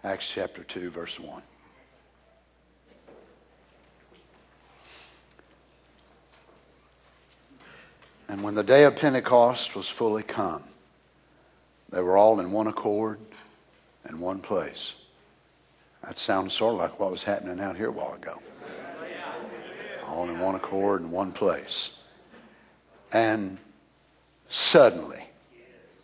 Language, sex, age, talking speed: English, male, 60-79, 105 wpm